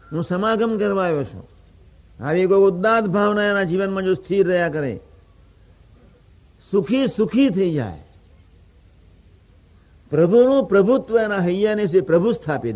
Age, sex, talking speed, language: 60-79, male, 115 wpm, Gujarati